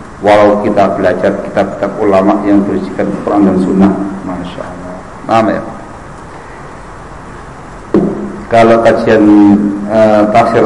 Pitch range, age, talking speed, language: 100-115 Hz, 50-69, 95 wpm, Indonesian